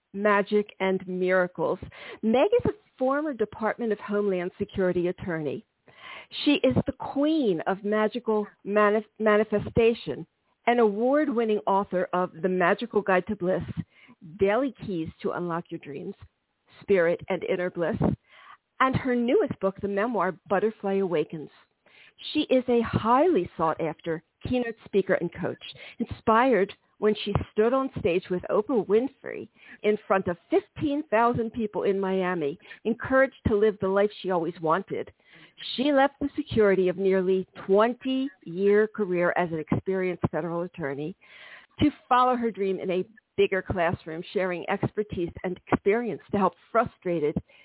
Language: English